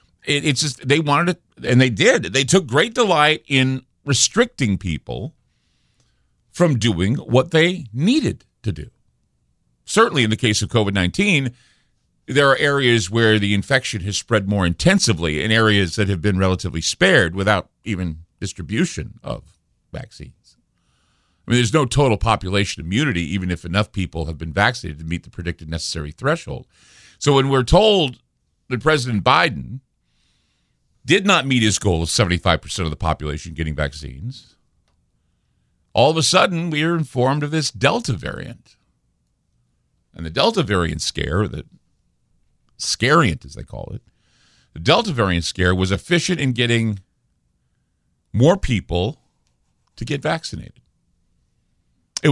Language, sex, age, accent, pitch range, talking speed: English, male, 50-69, American, 85-145 Hz, 145 wpm